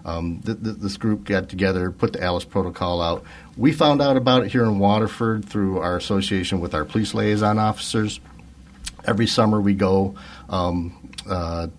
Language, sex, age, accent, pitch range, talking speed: English, male, 50-69, American, 80-100 Hz, 165 wpm